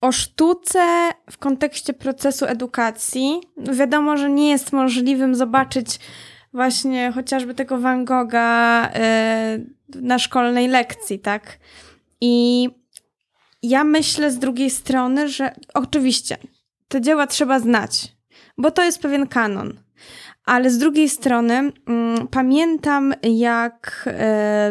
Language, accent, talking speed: Polish, native, 105 wpm